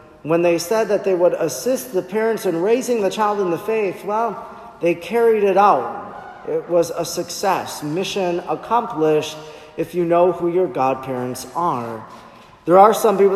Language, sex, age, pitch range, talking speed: English, male, 40-59, 155-195 Hz, 170 wpm